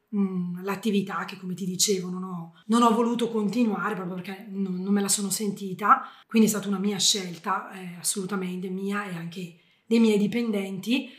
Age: 20-39